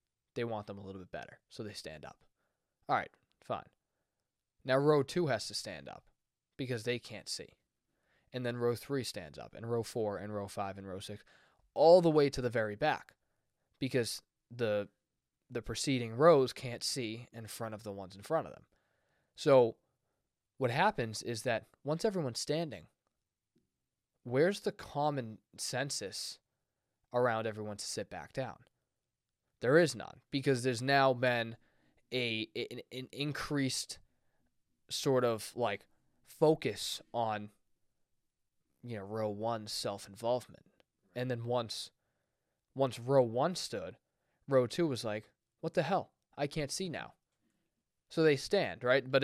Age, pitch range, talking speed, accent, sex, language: 20-39, 110-145 Hz, 155 wpm, American, male, English